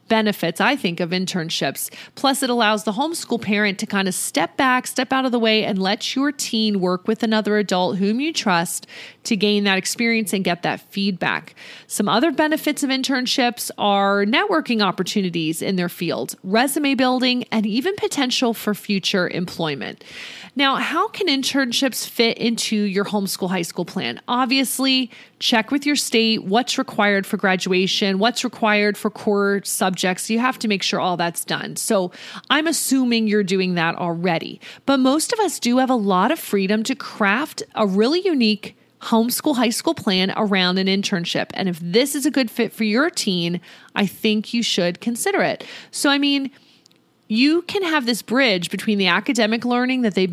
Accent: American